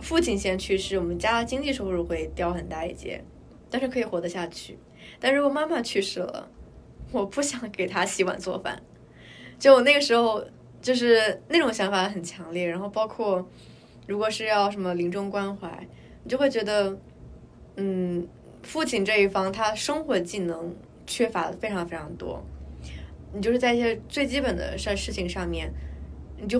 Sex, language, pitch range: female, Chinese, 180-230 Hz